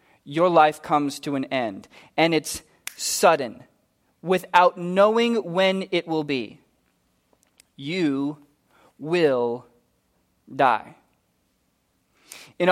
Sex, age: male, 20-39